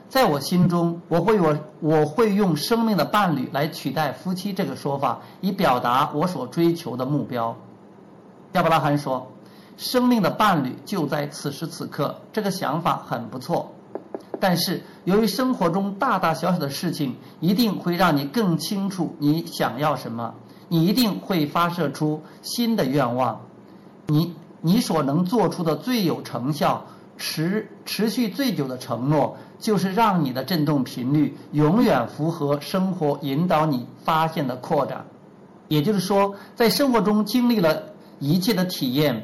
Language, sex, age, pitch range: Chinese, male, 50-69, 145-195 Hz